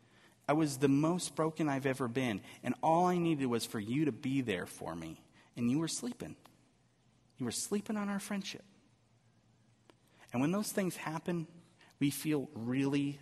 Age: 40-59